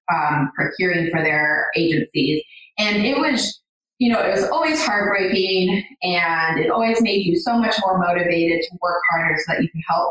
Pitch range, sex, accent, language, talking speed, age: 175-245 Hz, female, American, English, 185 wpm, 20-39